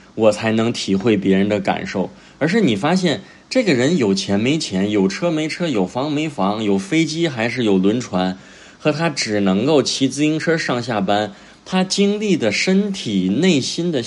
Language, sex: Chinese, male